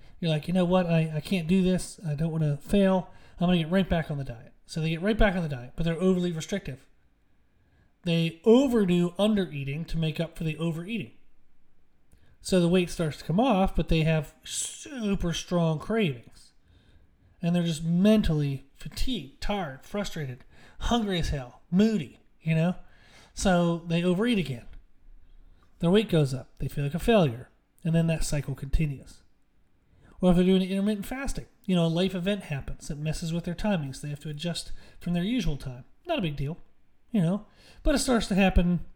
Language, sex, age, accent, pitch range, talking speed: English, male, 30-49, American, 150-185 Hz, 195 wpm